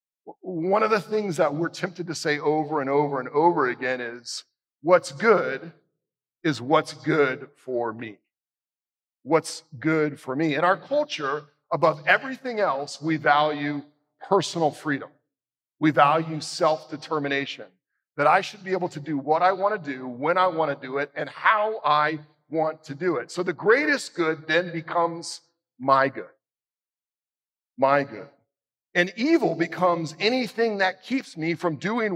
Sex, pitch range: male, 145-180 Hz